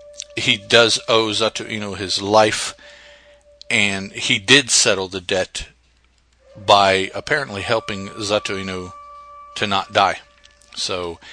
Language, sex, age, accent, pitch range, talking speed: English, male, 50-69, American, 95-135 Hz, 115 wpm